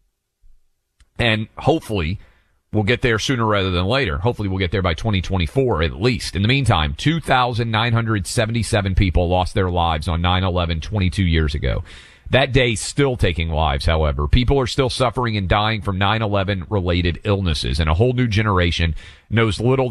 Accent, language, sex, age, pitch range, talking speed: American, English, male, 40-59, 90-115 Hz, 160 wpm